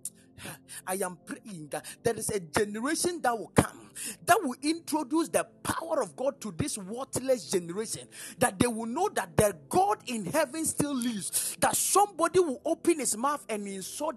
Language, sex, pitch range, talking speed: English, male, 210-320 Hz, 175 wpm